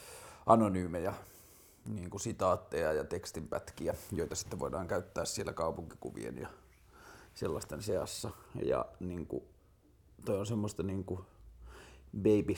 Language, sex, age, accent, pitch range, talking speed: Finnish, male, 30-49, native, 90-110 Hz, 115 wpm